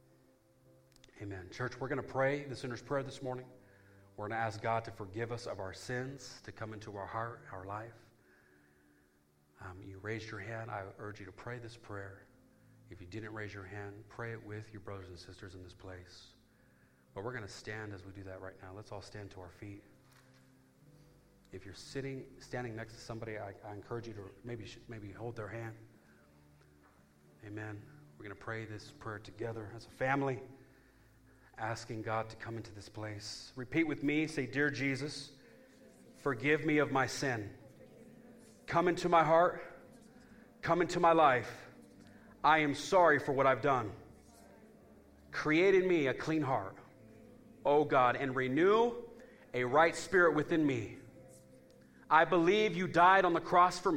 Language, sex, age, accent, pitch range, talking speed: English, male, 40-59, American, 100-140 Hz, 175 wpm